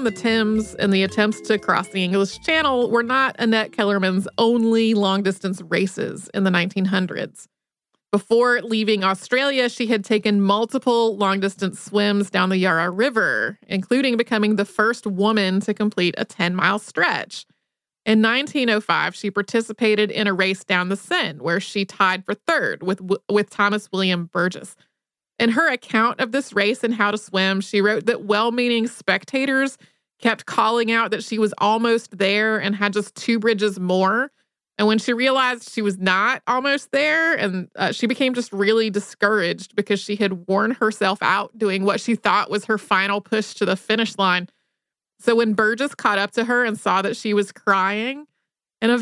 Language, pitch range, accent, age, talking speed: English, 195-235 Hz, American, 30-49, 175 wpm